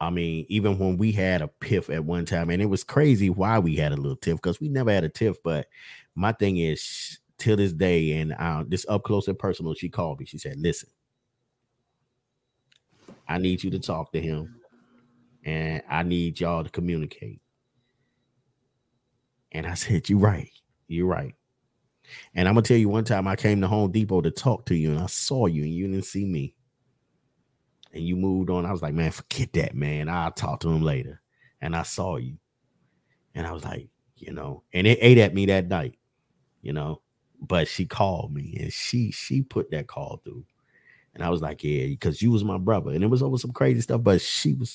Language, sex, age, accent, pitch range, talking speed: English, male, 30-49, American, 85-120 Hz, 215 wpm